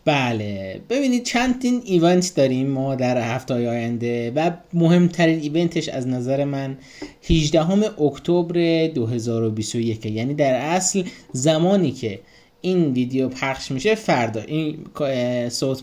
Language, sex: Persian, male